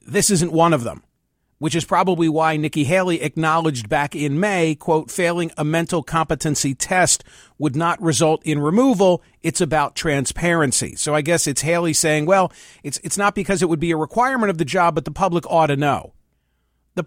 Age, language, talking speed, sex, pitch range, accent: 50-69, English, 195 wpm, male, 150-175 Hz, American